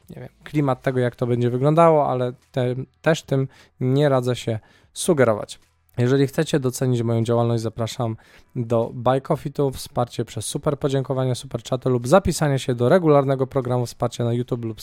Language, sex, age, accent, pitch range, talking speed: Polish, male, 20-39, native, 120-150 Hz, 170 wpm